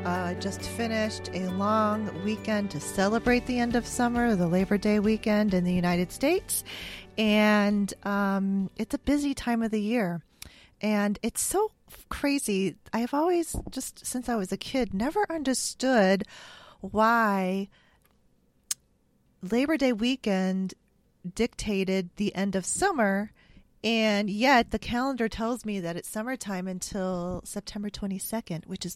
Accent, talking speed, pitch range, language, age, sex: American, 140 wpm, 180-230 Hz, English, 30-49, female